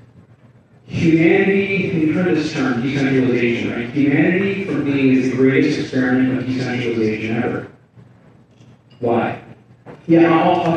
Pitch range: 130-155 Hz